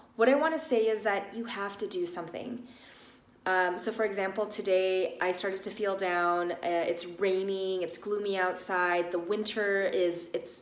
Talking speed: 180 wpm